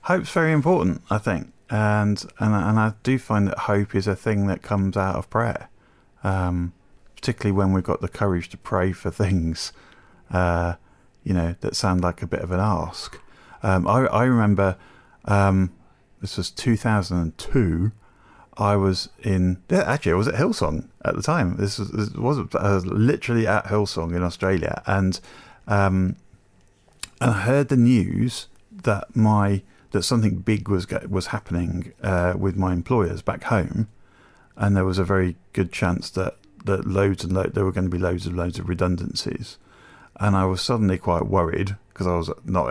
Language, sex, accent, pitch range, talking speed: English, male, British, 90-105 Hz, 175 wpm